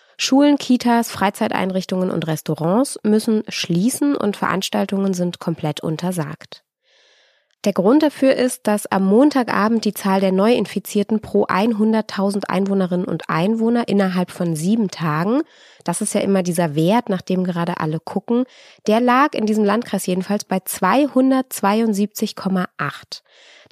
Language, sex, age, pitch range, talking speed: German, female, 20-39, 185-230 Hz, 130 wpm